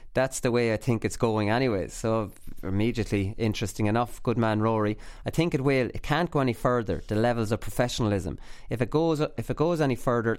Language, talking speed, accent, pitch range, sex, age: English, 210 wpm, Irish, 110-130 Hz, male, 30-49